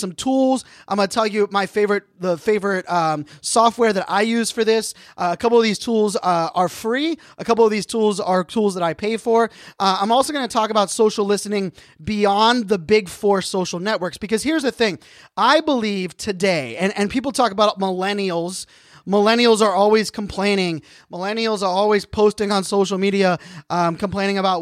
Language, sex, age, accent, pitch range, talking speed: English, male, 20-39, American, 185-230 Hz, 195 wpm